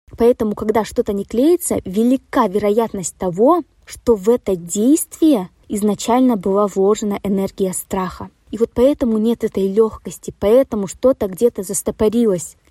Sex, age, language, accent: female, 20-39, Russian, native